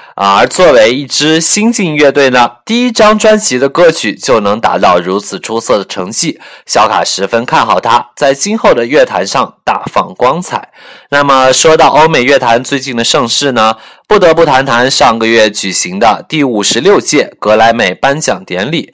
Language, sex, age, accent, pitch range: Chinese, male, 20-39, native, 115-175 Hz